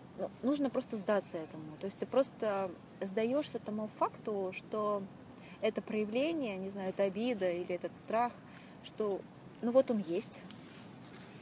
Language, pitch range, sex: Russian, 195-250 Hz, female